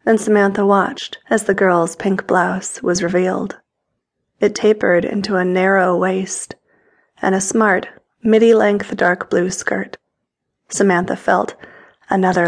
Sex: female